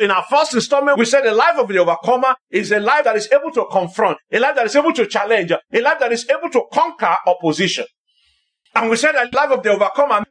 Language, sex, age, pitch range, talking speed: English, male, 50-69, 220-315 Hz, 250 wpm